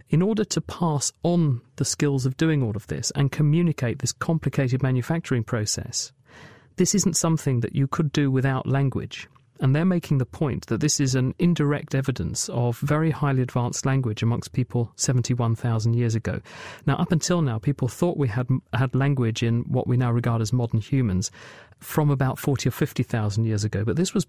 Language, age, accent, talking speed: English, 40-59, British, 190 wpm